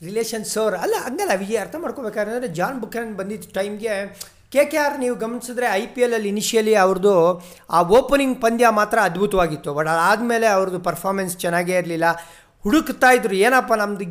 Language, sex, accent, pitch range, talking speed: Kannada, male, native, 175-225 Hz, 150 wpm